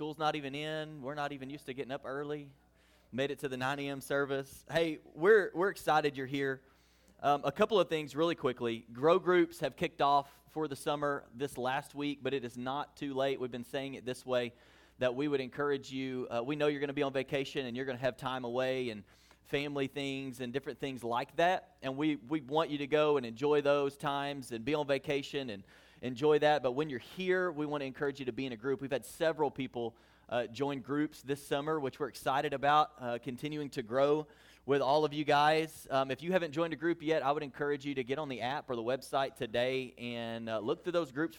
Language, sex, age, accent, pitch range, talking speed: English, male, 30-49, American, 130-155 Hz, 240 wpm